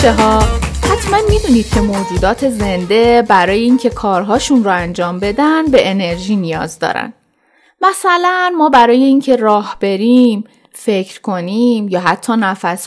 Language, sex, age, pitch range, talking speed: Persian, female, 30-49, 200-280 Hz, 120 wpm